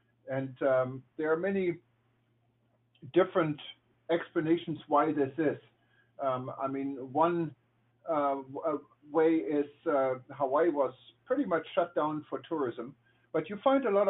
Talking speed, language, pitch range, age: 130 wpm, English, 125-160 Hz, 50-69